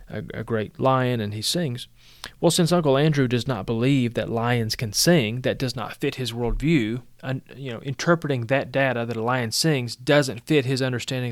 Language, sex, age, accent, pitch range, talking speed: English, male, 30-49, American, 115-150 Hz, 180 wpm